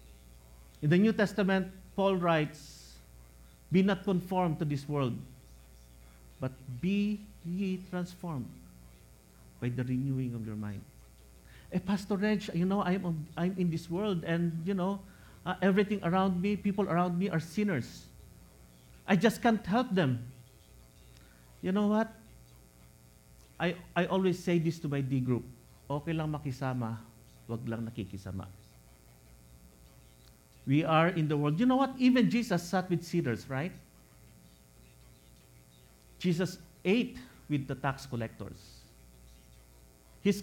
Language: English